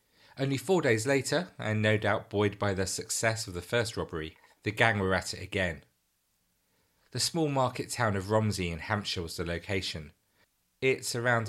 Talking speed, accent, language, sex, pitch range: 180 wpm, British, English, male, 90-110 Hz